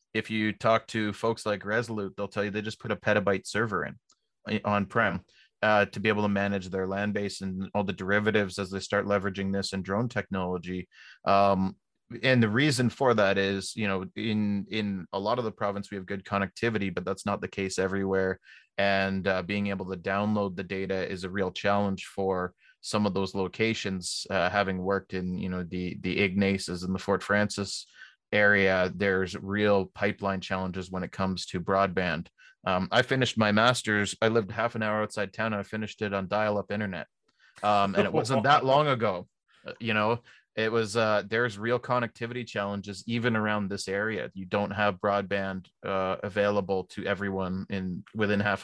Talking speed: 190 wpm